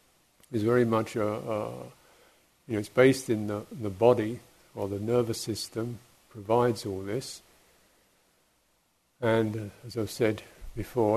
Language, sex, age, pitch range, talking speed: English, male, 50-69, 100-115 Hz, 140 wpm